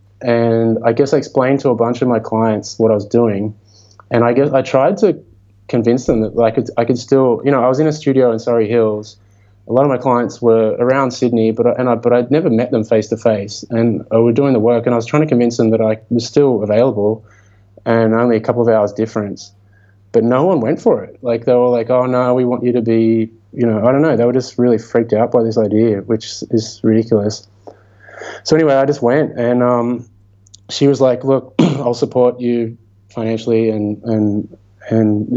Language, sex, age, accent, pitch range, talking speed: English, male, 20-39, Australian, 105-125 Hz, 230 wpm